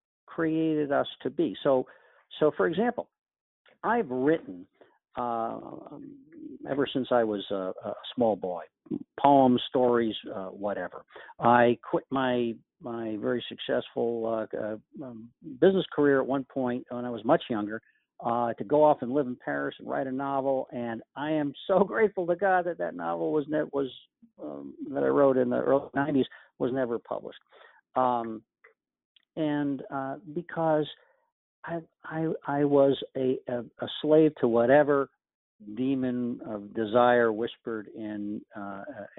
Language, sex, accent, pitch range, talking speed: English, male, American, 115-150 Hz, 145 wpm